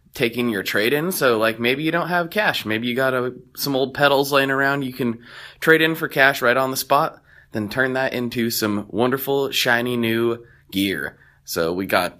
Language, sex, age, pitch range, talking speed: English, male, 20-39, 110-140 Hz, 205 wpm